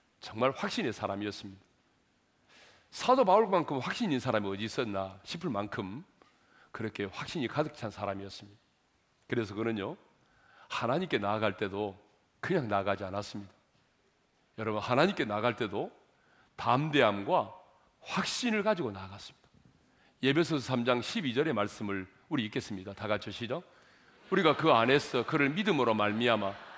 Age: 40-59